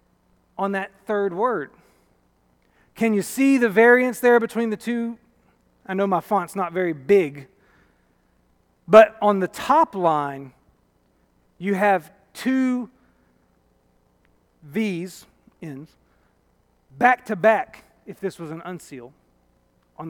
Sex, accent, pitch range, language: male, American, 140-205 Hz, English